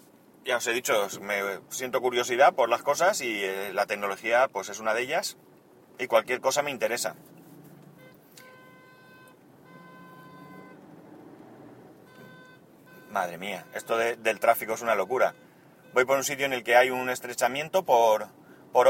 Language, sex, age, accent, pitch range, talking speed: Spanish, male, 30-49, Spanish, 115-145 Hz, 135 wpm